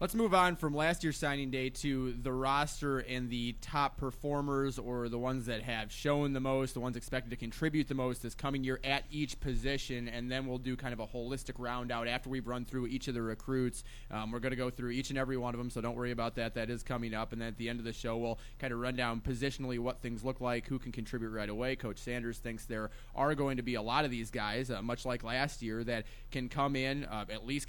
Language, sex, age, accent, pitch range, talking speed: English, male, 20-39, American, 115-135 Hz, 265 wpm